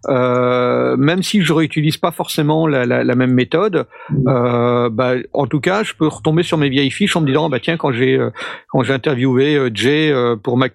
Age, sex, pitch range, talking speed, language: 50-69, male, 125-155 Hz, 210 wpm, French